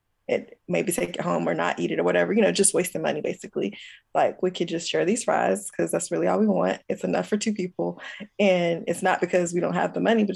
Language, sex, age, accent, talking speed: English, female, 20-39, American, 260 wpm